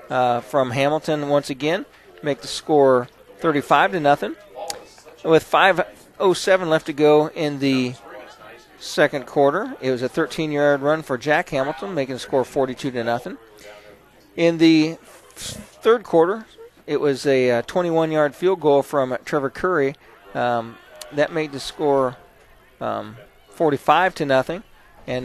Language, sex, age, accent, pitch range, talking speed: English, male, 40-59, American, 130-160 Hz, 140 wpm